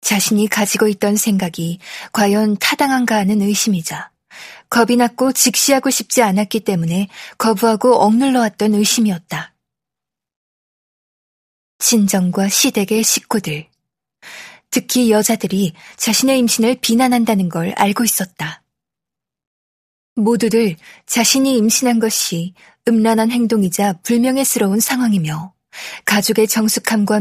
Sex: female